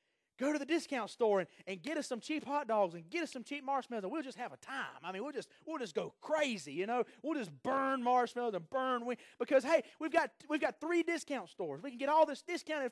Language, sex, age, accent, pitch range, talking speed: English, male, 30-49, American, 240-300 Hz, 265 wpm